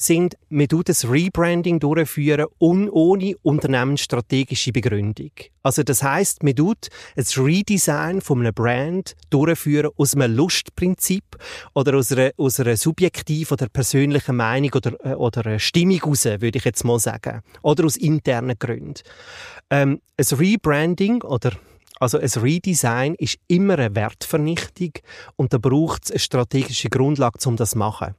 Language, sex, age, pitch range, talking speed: German, male, 30-49, 120-160 Hz, 140 wpm